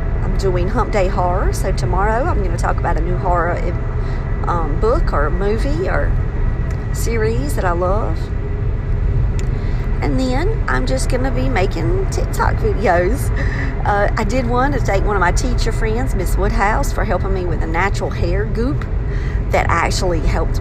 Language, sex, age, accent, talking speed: English, female, 40-59, American, 165 wpm